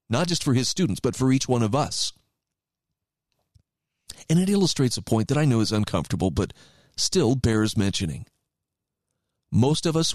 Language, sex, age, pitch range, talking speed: English, male, 40-59, 110-150 Hz, 165 wpm